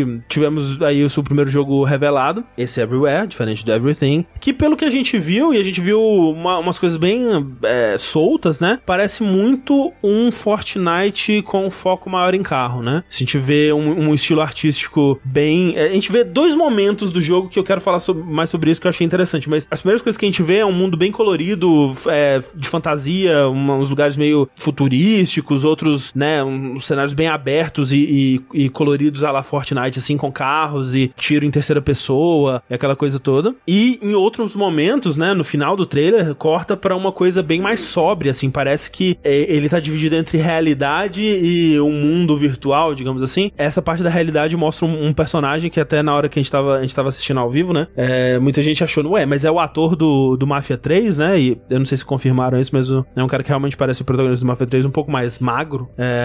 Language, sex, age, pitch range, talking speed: Portuguese, male, 20-39, 135-180 Hz, 210 wpm